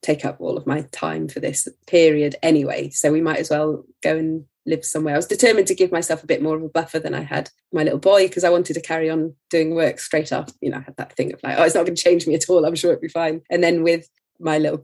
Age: 20-39